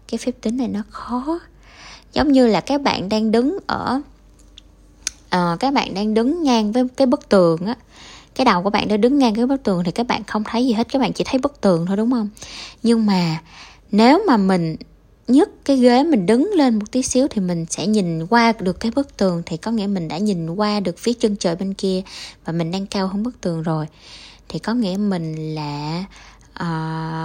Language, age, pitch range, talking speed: Vietnamese, 10-29, 180-245 Hz, 225 wpm